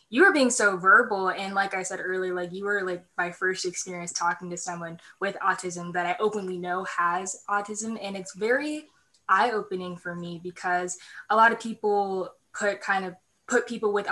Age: 10-29